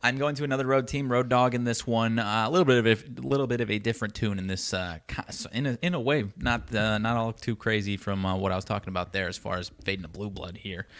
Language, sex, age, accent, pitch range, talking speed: English, male, 20-39, American, 95-120 Hz, 295 wpm